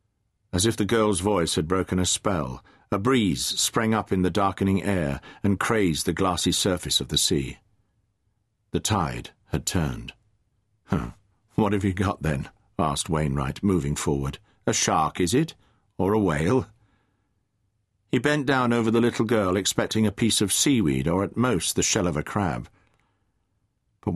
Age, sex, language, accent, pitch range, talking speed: 50-69, male, English, British, 90-110 Hz, 165 wpm